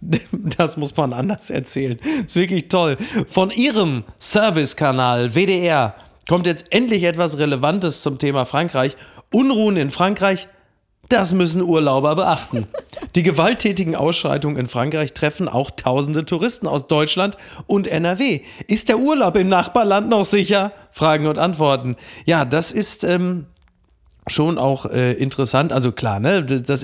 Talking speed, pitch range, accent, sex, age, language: 140 wpm, 130-165 Hz, German, male, 40-59, German